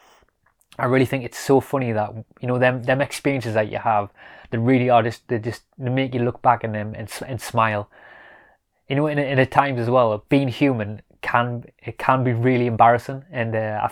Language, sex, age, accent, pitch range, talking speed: English, male, 20-39, British, 105-125 Hz, 210 wpm